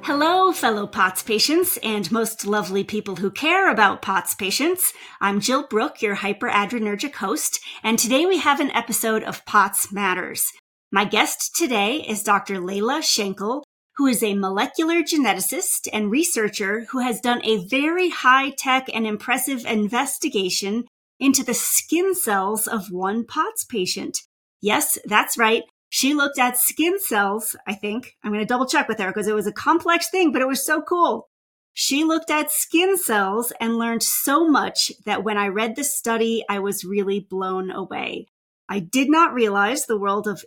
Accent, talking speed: American, 170 wpm